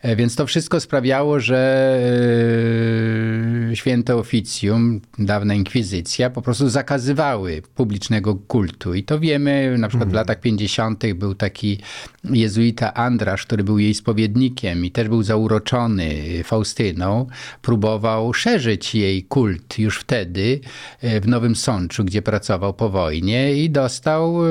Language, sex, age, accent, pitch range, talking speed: Polish, male, 50-69, native, 110-145 Hz, 120 wpm